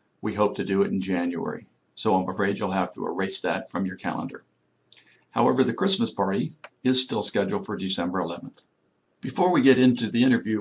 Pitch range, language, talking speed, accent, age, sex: 95-110 Hz, English, 190 wpm, American, 60-79, male